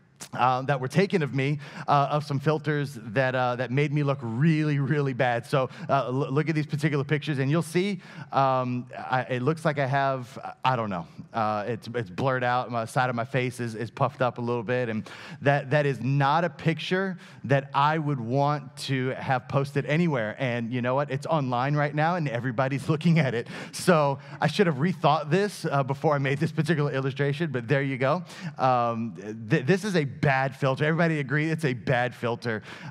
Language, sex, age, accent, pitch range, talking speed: English, male, 30-49, American, 120-150 Hz, 210 wpm